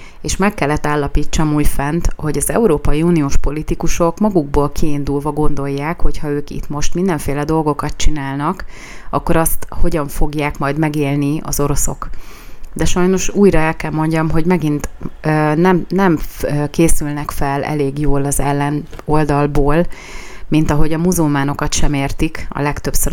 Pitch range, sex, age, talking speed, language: 140-160 Hz, female, 30-49, 145 wpm, Hungarian